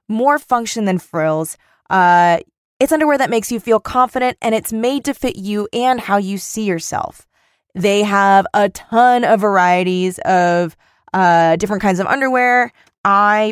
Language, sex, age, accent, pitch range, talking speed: English, female, 20-39, American, 185-255 Hz, 160 wpm